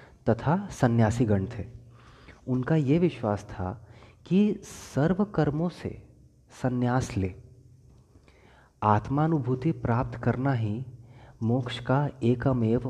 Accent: native